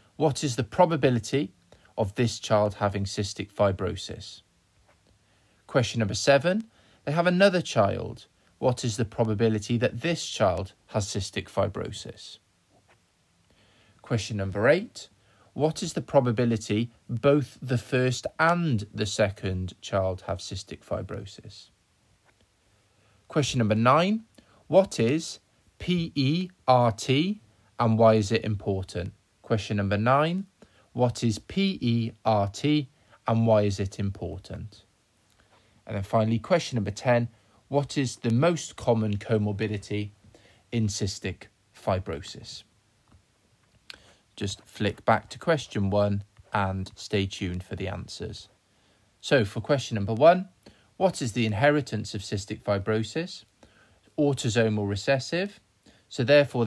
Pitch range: 100-130 Hz